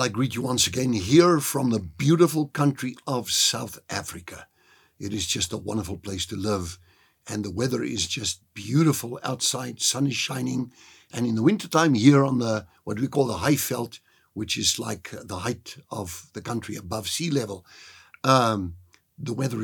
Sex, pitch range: male, 95-125 Hz